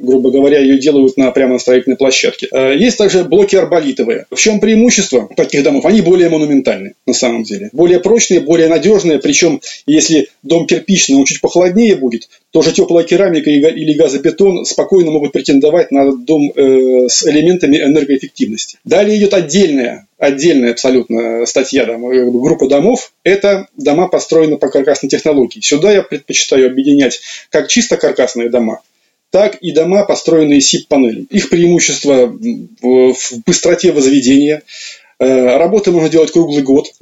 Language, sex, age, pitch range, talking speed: Russian, male, 30-49, 140-195 Hz, 140 wpm